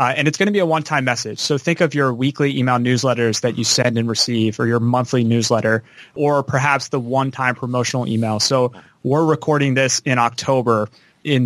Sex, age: male, 20-39